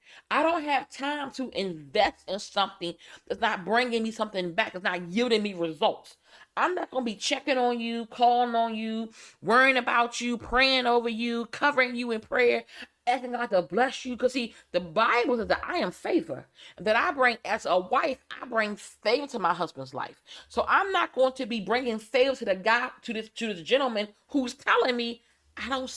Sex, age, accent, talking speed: female, 30-49, American, 205 wpm